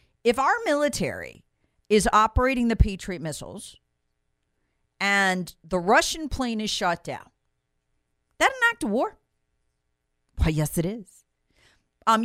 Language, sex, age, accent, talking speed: English, female, 40-59, American, 125 wpm